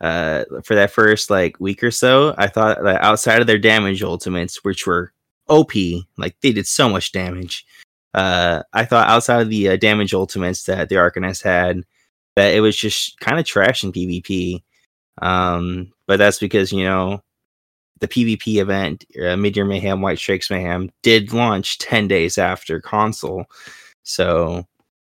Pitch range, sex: 90-105 Hz, male